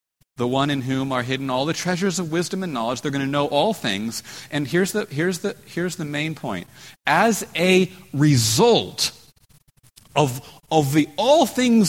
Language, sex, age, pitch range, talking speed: English, male, 40-59, 125-190 Hz, 165 wpm